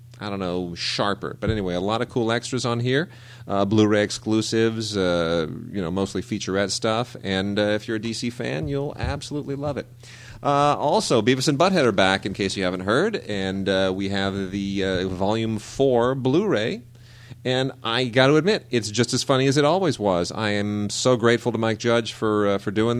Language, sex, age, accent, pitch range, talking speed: English, male, 30-49, American, 95-125 Hz, 205 wpm